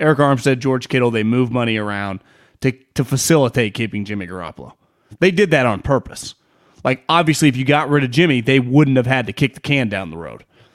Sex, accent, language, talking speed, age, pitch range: male, American, English, 210 wpm, 30-49, 125-165 Hz